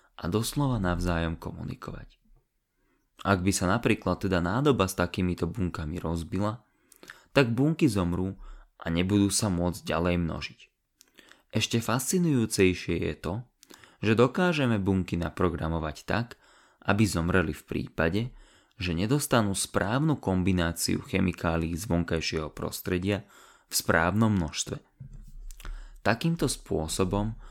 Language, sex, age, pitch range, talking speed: Slovak, male, 20-39, 85-115 Hz, 105 wpm